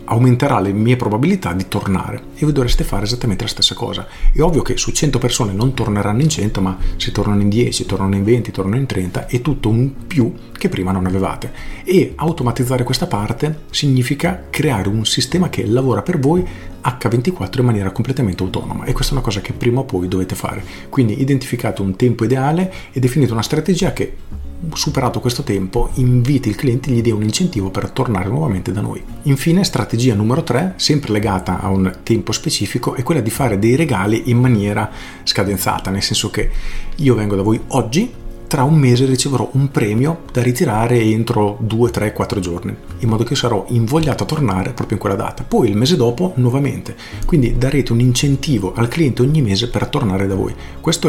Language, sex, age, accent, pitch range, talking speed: Italian, male, 40-59, native, 100-130 Hz, 195 wpm